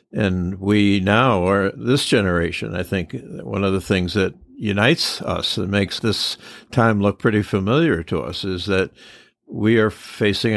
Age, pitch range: 60-79, 90-105 Hz